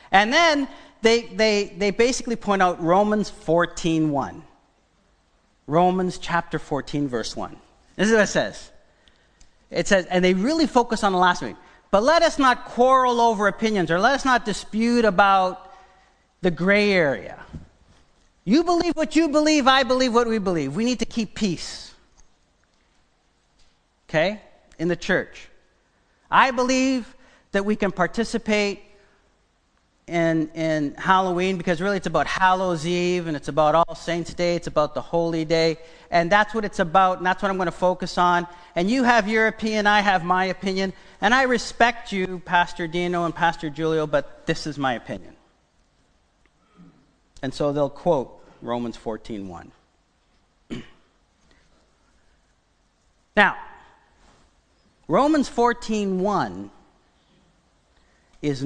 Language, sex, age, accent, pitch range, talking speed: English, male, 50-69, American, 155-220 Hz, 140 wpm